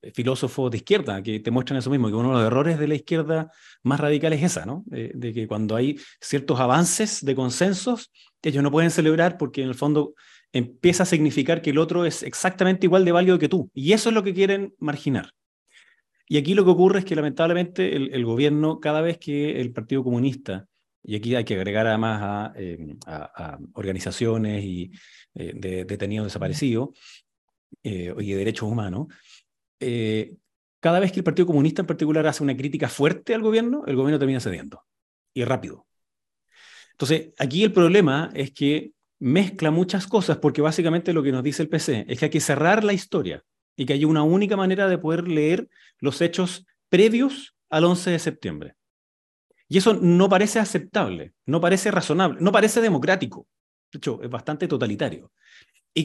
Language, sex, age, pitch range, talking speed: Spanish, male, 30-49, 130-180 Hz, 185 wpm